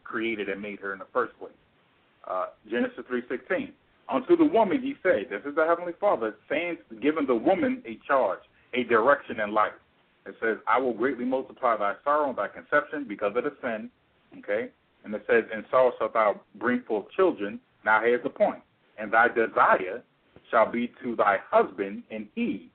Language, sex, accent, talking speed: English, male, American, 185 wpm